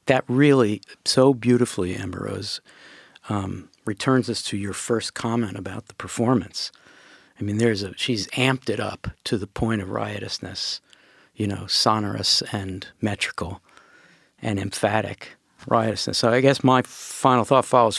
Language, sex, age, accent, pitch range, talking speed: English, male, 50-69, American, 105-135 Hz, 145 wpm